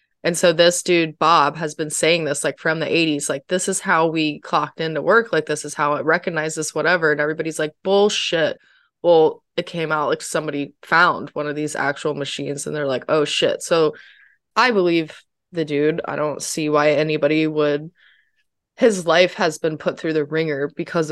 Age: 20-39